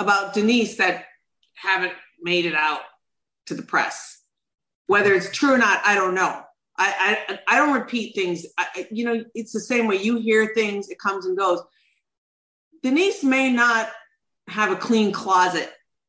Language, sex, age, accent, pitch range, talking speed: English, female, 40-59, American, 185-230 Hz, 165 wpm